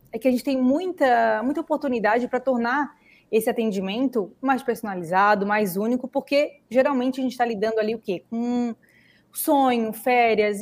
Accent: Brazilian